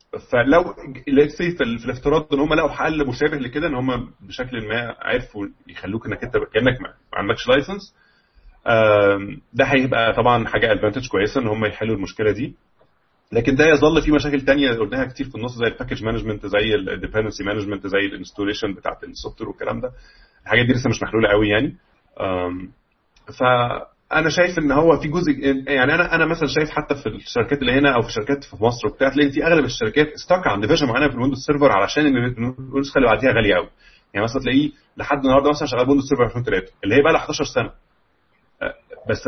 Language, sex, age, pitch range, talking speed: Arabic, male, 30-49, 110-145 Hz, 185 wpm